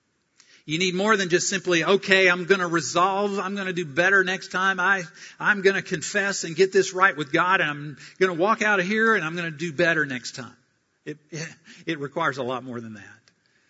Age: 50-69